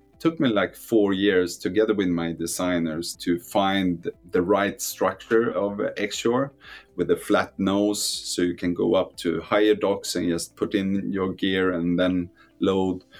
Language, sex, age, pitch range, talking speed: English, male, 30-49, 85-100 Hz, 170 wpm